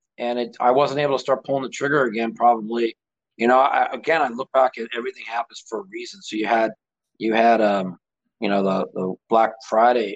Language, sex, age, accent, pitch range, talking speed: English, male, 40-59, American, 95-115 Hz, 220 wpm